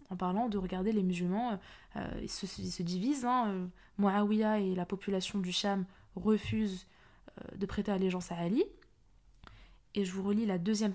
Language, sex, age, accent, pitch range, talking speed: French, female, 20-39, French, 190-245 Hz, 170 wpm